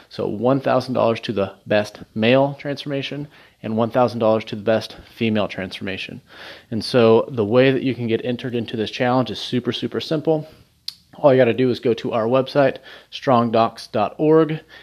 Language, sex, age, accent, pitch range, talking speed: English, male, 30-49, American, 115-135 Hz, 160 wpm